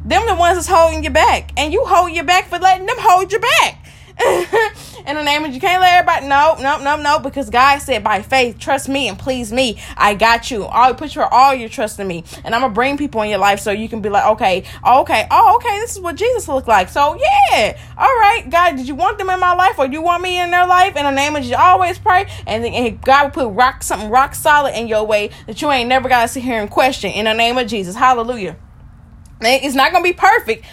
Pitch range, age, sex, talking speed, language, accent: 215-295 Hz, 20-39, female, 260 wpm, English, American